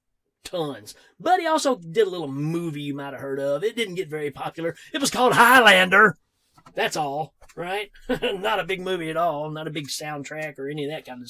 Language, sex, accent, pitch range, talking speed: English, male, American, 140-215 Hz, 220 wpm